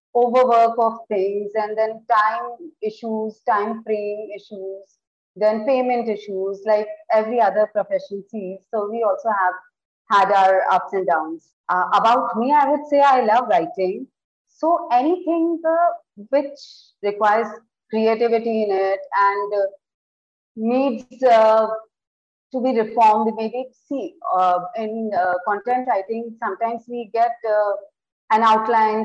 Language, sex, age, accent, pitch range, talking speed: Hindi, female, 30-49, native, 205-255 Hz, 135 wpm